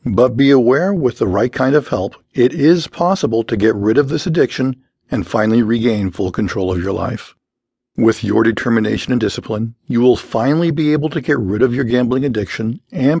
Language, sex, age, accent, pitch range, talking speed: English, male, 50-69, American, 110-140 Hz, 200 wpm